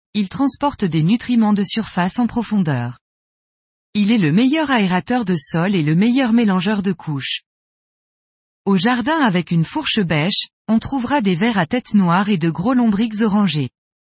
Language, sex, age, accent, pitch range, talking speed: French, female, 20-39, French, 180-245 Hz, 165 wpm